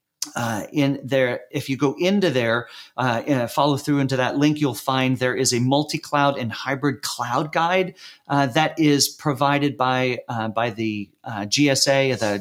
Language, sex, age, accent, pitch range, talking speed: English, male, 40-59, American, 125-155 Hz, 170 wpm